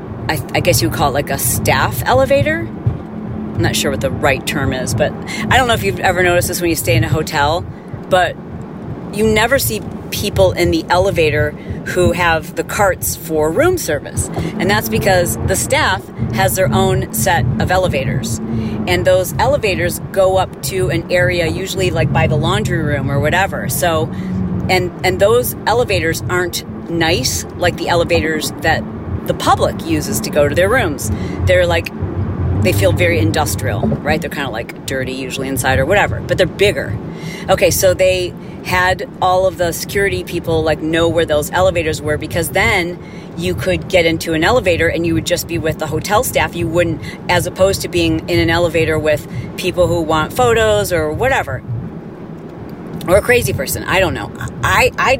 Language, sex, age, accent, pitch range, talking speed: English, female, 40-59, American, 135-180 Hz, 185 wpm